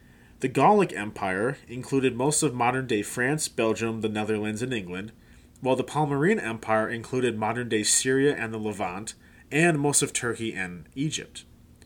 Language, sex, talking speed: English, male, 145 wpm